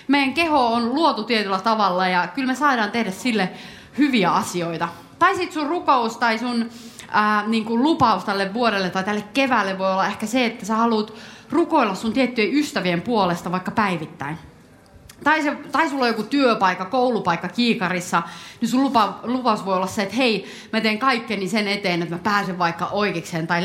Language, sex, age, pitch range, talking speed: Finnish, female, 30-49, 195-260 Hz, 185 wpm